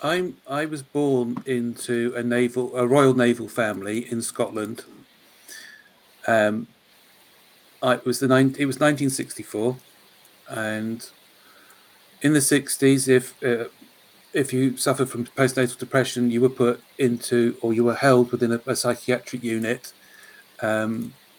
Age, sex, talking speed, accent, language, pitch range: 50-69, male, 135 wpm, British, English, 115-130 Hz